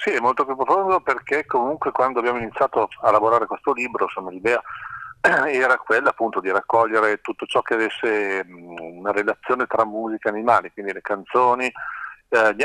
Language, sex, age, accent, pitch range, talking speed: Italian, male, 40-59, native, 105-120 Hz, 160 wpm